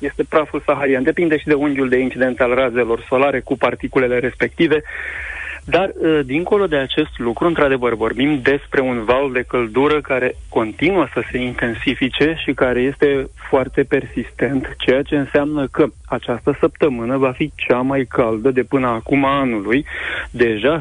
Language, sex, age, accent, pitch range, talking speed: Romanian, male, 30-49, native, 125-145 Hz, 155 wpm